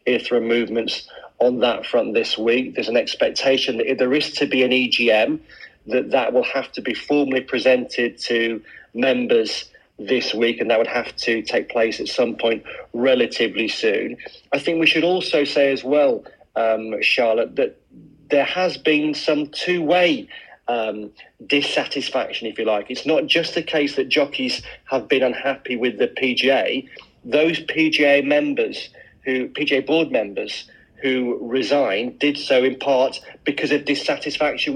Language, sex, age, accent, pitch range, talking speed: English, male, 40-59, British, 125-150 Hz, 155 wpm